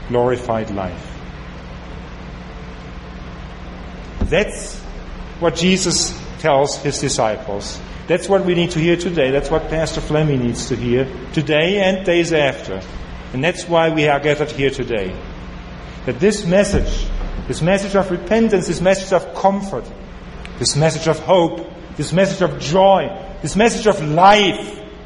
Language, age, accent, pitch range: English, 40-59, German, 105-170 Hz